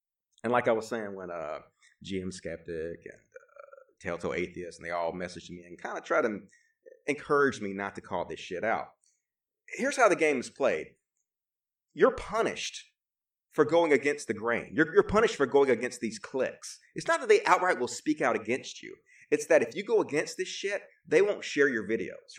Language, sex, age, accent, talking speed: English, male, 30-49, American, 200 wpm